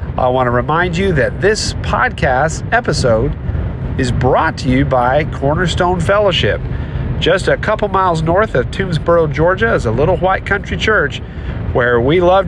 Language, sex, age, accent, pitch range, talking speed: English, male, 40-59, American, 120-170 Hz, 160 wpm